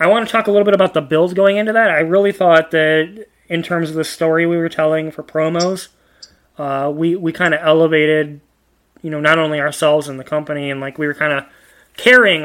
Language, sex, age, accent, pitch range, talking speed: English, male, 20-39, American, 145-175 Hz, 225 wpm